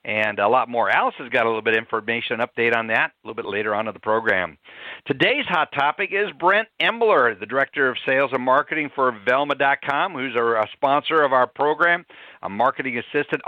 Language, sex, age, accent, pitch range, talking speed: English, male, 60-79, American, 125-165 Hz, 205 wpm